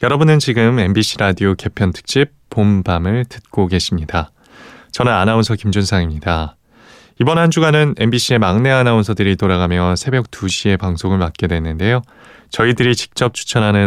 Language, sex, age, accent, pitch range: Korean, male, 20-39, native, 90-130 Hz